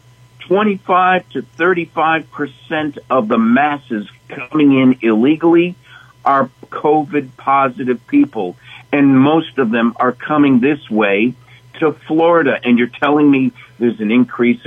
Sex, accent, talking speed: male, American, 125 wpm